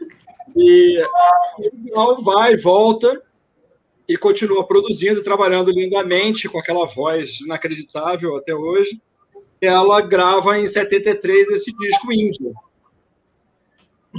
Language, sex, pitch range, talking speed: Portuguese, male, 185-275 Hz, 100 wpm